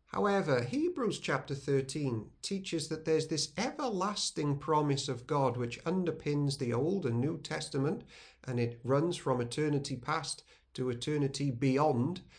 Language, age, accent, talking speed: English, 50-69, British, 135 wpm